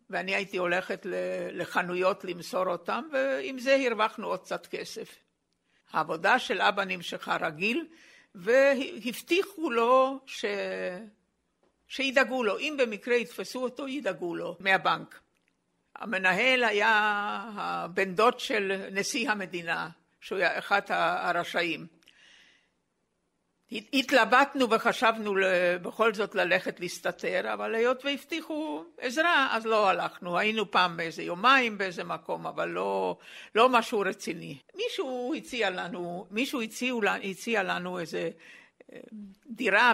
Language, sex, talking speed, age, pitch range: Hebrew, female, 110 wpm, 60-79, 185-255 Hz